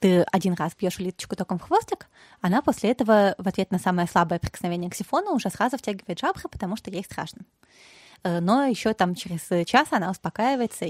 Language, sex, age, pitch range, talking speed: Russian, female, 20-39, 180-230 Hz, 185 wpm